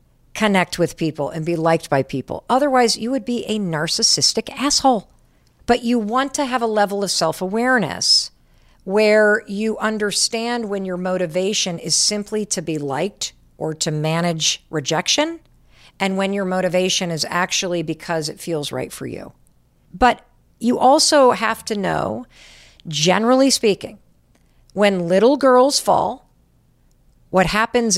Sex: female